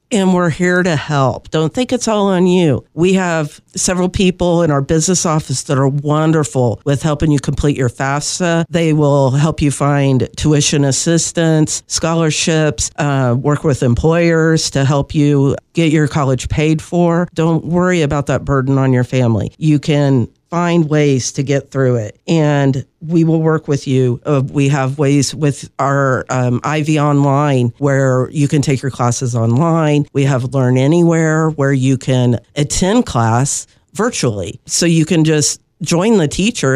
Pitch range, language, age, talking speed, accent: 130-160 Hz, English, 50-69, 170 wpm, American